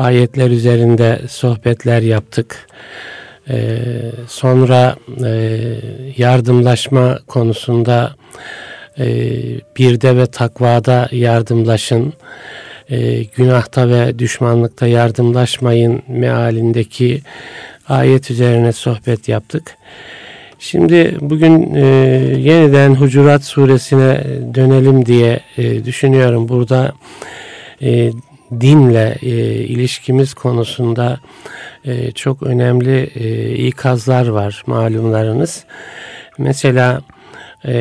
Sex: male